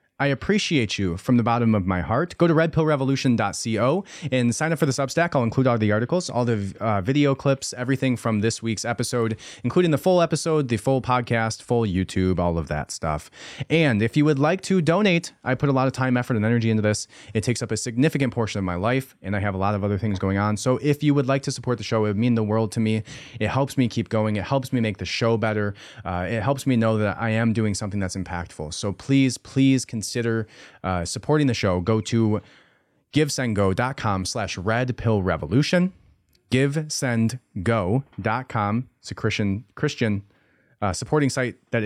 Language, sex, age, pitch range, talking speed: English, male, 30-49, 105-135 Hz, 215 wpm